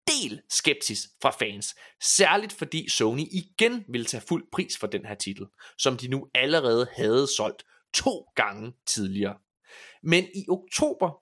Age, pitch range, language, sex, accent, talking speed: 20-39, 130-220 Hz, Danish, male, native, 150 wpm